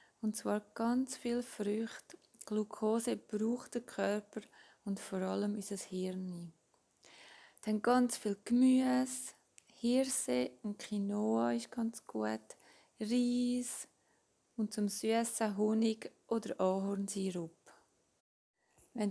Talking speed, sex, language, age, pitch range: 105 wpm, female, German, 20-39, 200-230 Hz